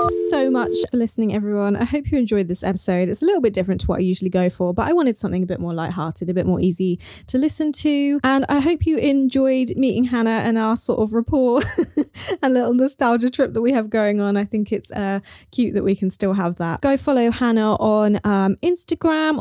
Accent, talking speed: British, 230 wpm